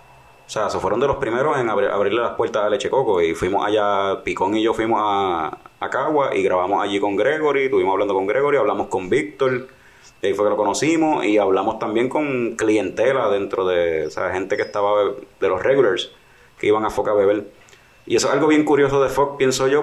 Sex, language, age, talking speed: male, Spanish, 30-49, 220 wpm